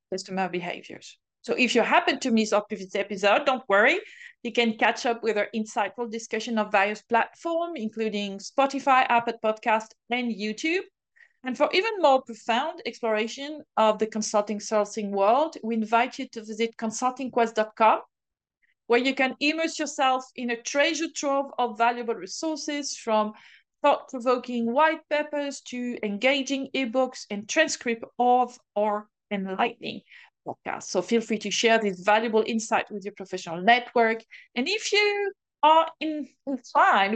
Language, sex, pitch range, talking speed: English, female, 210-265 Hz, 145 wpm